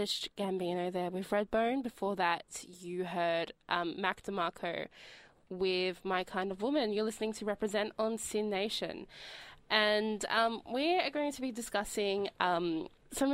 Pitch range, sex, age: 180-220 Hz, female, 20-39